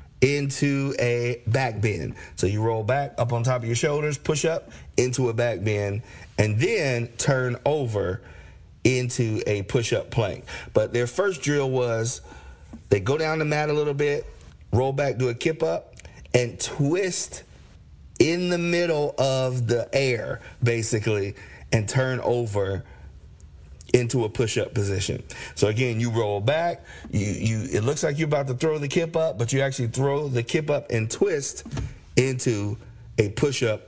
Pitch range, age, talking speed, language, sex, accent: 105-140 Hz, 40-59, 165 wpm, English, male, American